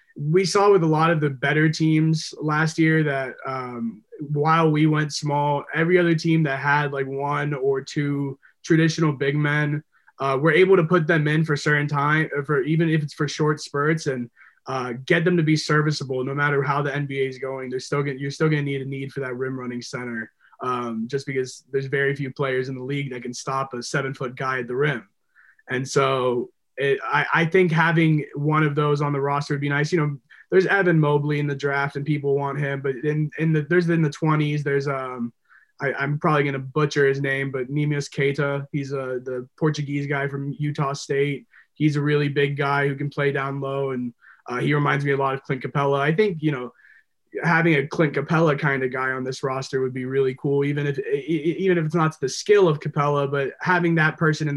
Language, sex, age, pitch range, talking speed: English, male, 20-39, 135-155 Hz, 225 wpm